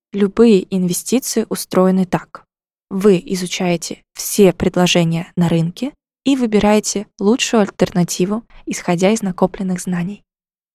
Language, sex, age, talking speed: Russian, female, 20-39, 100 wpm